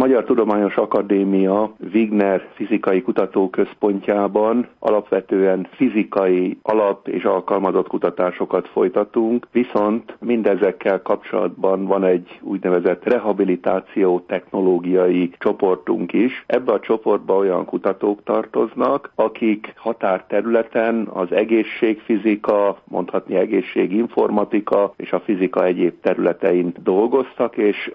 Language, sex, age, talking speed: Hungarian, male, 50-69, 90 wpm